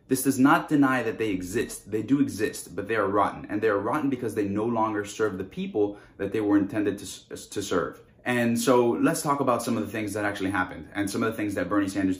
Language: English